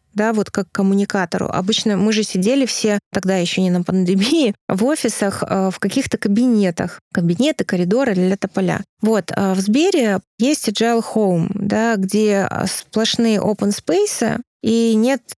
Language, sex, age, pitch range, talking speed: Russian, female, 20-39, 200-235 Hz, 140 wpm